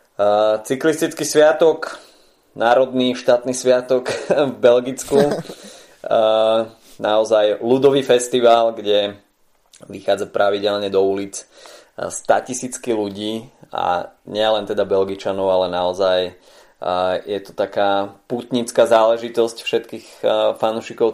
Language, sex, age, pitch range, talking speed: Slovak, male, 20-39, 100-120 Hz, 95 wpm